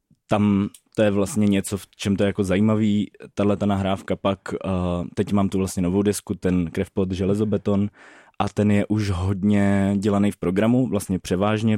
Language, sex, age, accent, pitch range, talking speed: Czech, male, 20-39, native, 95-100 Hz, 180 wpm